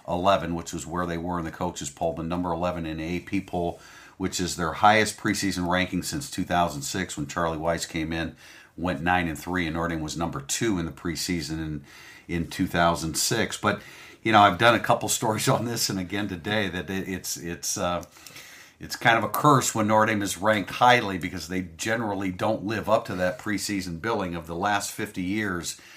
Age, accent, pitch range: 50-69, American, 85-105 Hz